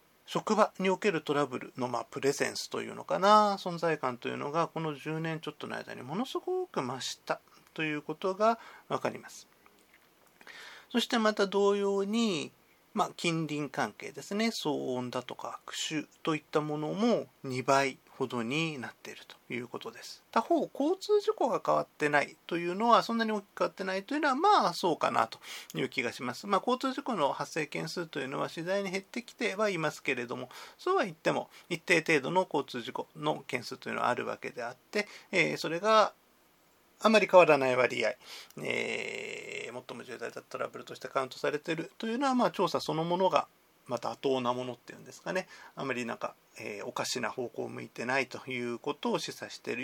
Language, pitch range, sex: Japanese, 150-225 Hz, male